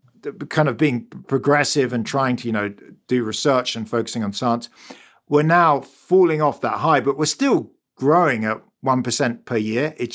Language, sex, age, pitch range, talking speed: English, male, 50-69, 115-145 Hz, 185 wpm